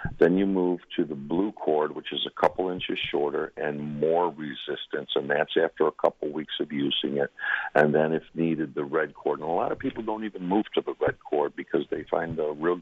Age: 60-79